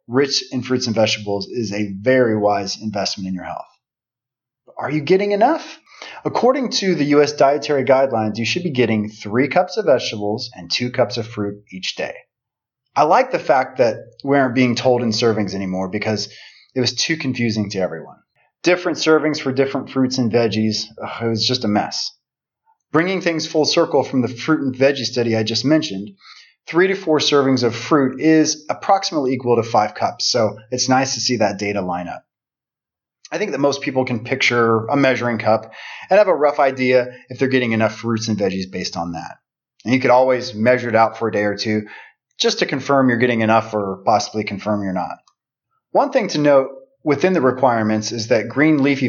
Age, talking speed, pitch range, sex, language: 30-49, 200 wpm, 110-145 Hz, male, English